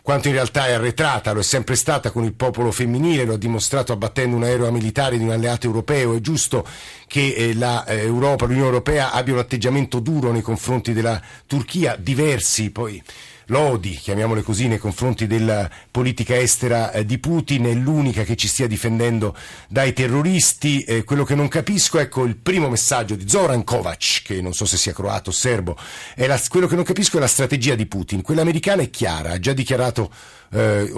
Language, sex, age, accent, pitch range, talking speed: Italian, male, 50-69, native, 110-140 Hz, 190 wpm